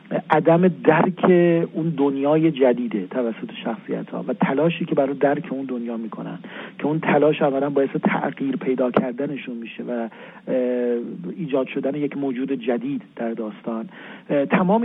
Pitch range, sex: 135-175 Hz, male